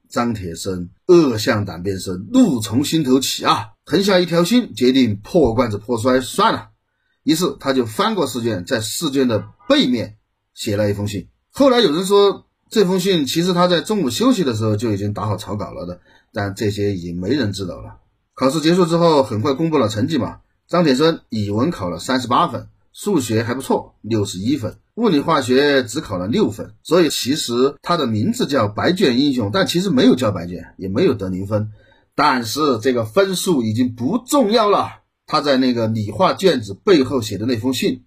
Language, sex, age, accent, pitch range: Chinese, male, 30-49, native, 105-145 Hz